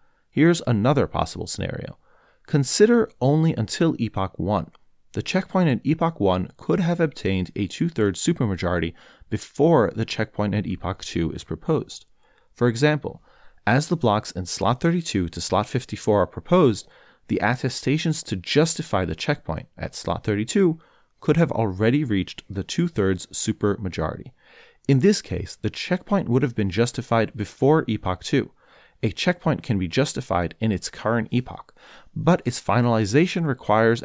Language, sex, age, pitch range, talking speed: English, male, 30-49, 100-150 Hz, 145 wpm